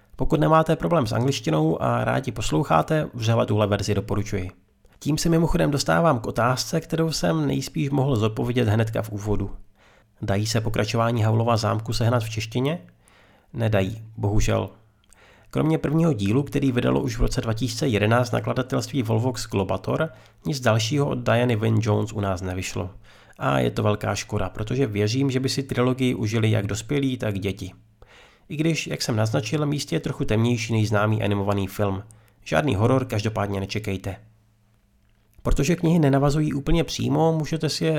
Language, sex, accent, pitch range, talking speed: Czech, male, native, 105-140 Hz, 155 wpm